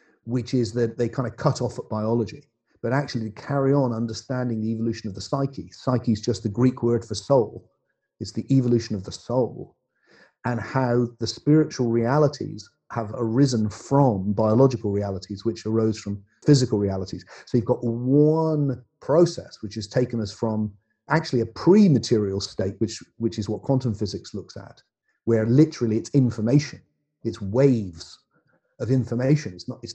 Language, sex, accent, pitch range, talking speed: English, male, British, 110-135 Hz, 165 wpm